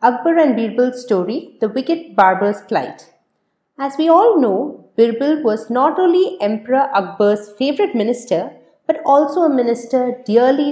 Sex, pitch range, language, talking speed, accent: female, 195-270 Hz, English, 140 wpm, Indian